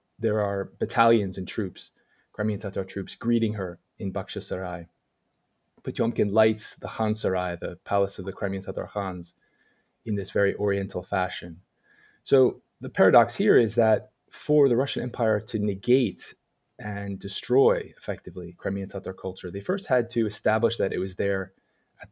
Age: 20-39